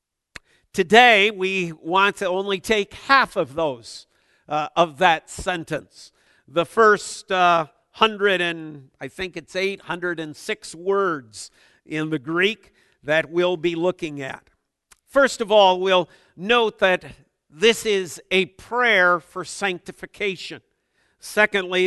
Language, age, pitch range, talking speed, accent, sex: English, 50-69, 165-205 Hz, 120 wpm, American, male